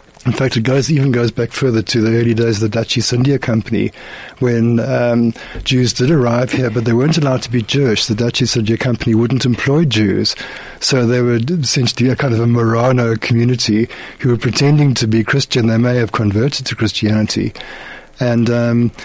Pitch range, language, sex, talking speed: 115-130 Hz, English, male, 200 wpm